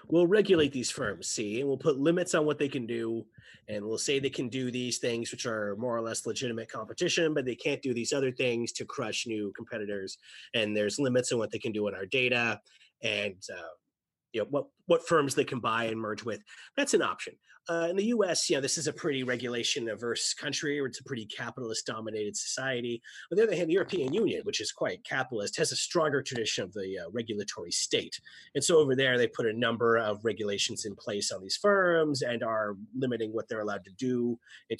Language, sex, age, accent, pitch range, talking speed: English, male, 30-49, American, 115-150 Hz, 220 wpm